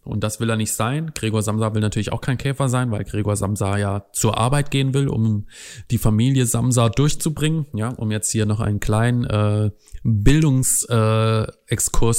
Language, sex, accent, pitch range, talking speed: German, male, German, 105-125 Hz, 175 wpm